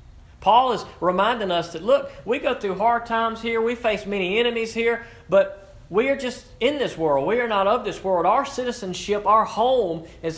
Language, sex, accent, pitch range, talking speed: English, male, American, 135-200 Hz, 200 wpm